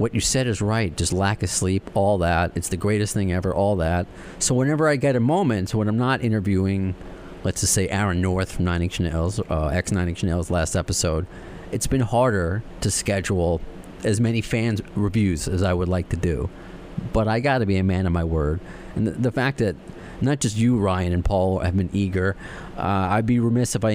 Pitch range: 90-115 Hz